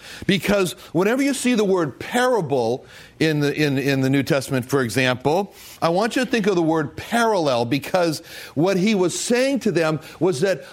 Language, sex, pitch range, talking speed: English, male, 160-210 Hz, 190 wpm